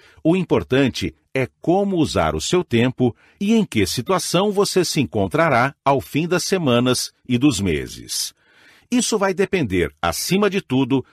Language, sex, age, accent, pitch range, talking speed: Portuguese, male, 60-79, Brazilian, 115-160 Hz, 150 wpm